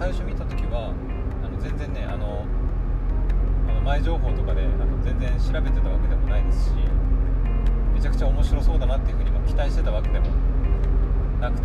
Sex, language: male, Japanese